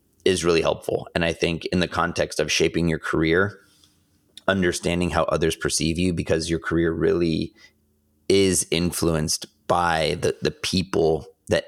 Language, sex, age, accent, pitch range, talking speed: English, male, 30-49, American, 80-85 Hz, 150 wpm